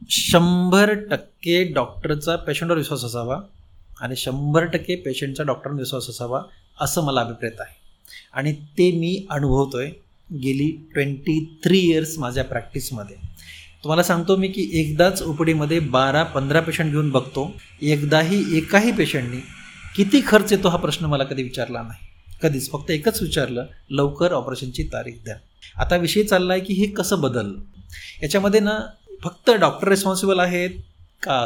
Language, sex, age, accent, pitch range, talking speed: Marathi, male, 30-49, native, 130-185 Hz, 115 wpm